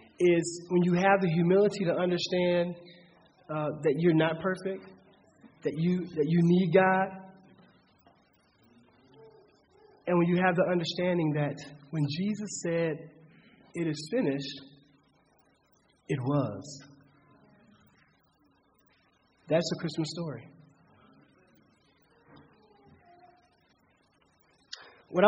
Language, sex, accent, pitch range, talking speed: English, male, American, 145-180 Hz, 95 wpm